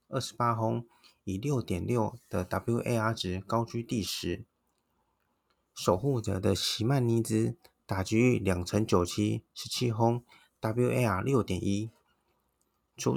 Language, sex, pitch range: Chinese, male, 100-120 Hz